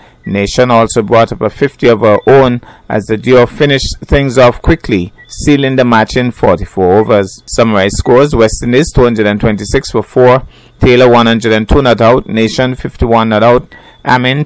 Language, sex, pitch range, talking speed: English, male, 110-125 Hz, 160 wpm